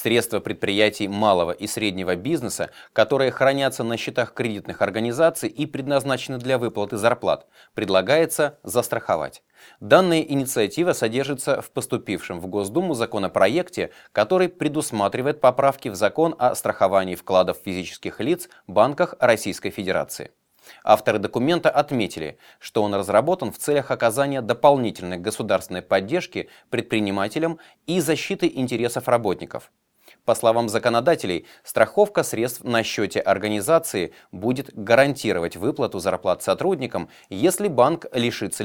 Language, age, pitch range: Russian, 30-49, 100-140 Hz